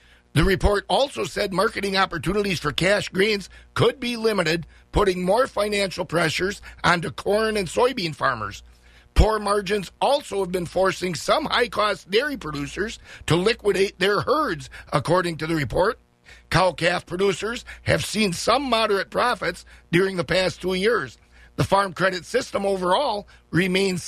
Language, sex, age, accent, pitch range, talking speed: English, male, 50-69, American, 160-205 Hz, 140 wpm